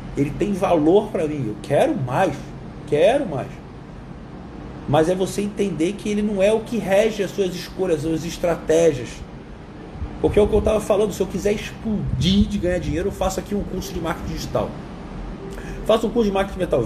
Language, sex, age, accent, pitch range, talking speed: Portuguese, male, 40-59, Brazilian, 155-200 Hz, 195 wpm